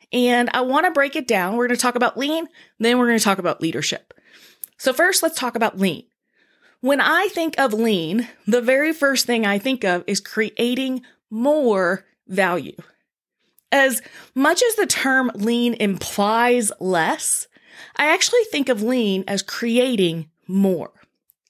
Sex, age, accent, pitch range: female, 20-39, American, 215-295 Hz